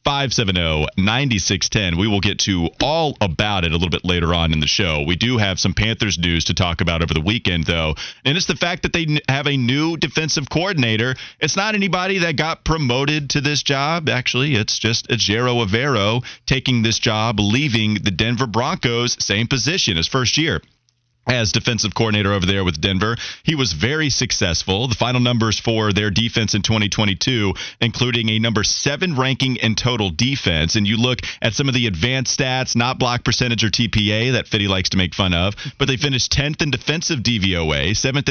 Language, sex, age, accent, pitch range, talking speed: English, male, 30-49, American, 100-130 Hz, 200 wpm